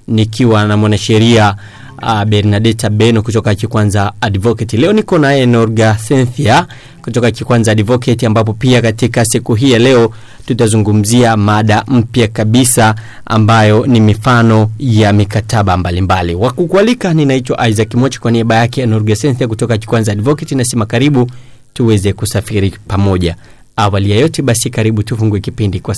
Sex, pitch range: male, 105-120 Hz